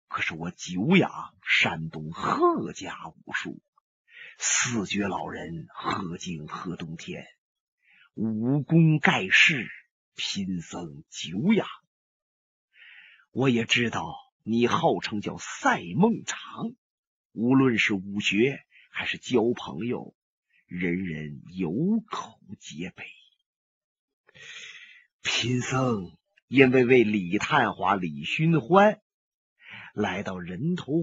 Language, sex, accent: Chinese, male, native